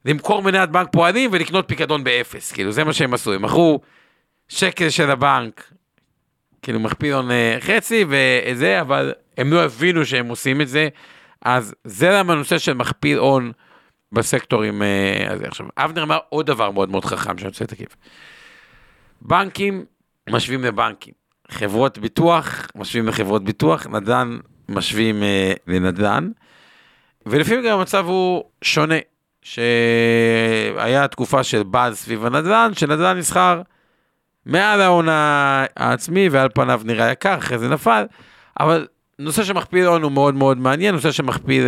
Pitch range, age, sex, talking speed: 115-175 Hz, 50-69, male, 130 wpm